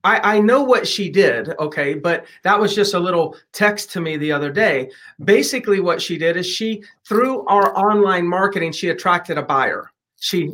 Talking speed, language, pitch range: 195 wpm, English, 175-215 Hz